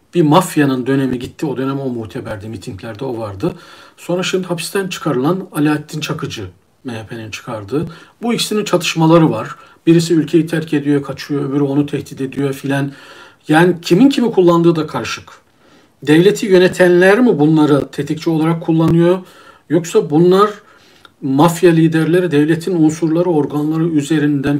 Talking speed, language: 130 wpm, Turkish